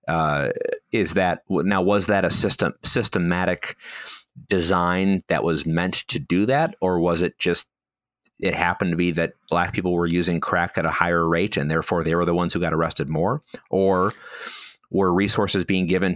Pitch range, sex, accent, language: 85-100 Hz, male, American, English